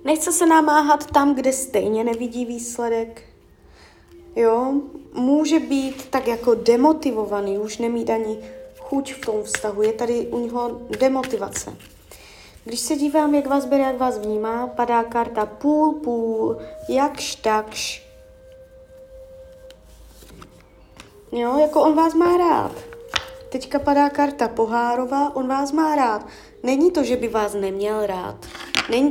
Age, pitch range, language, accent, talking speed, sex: 20-39, 215-280 Hz, Czech, native, 125 wpm, female